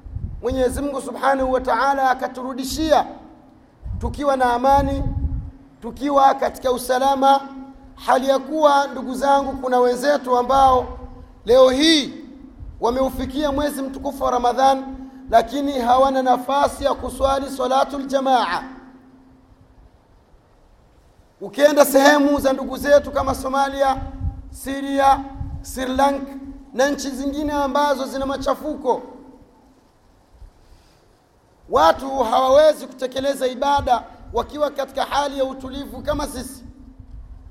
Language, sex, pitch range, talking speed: Swahili, male, 255-275 Hz, 100 wpm